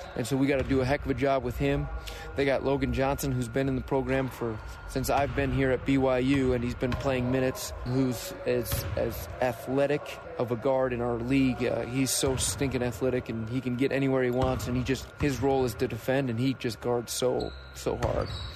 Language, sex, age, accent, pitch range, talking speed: English, male, 20-39, American, 120-135 Hz, 230 wpm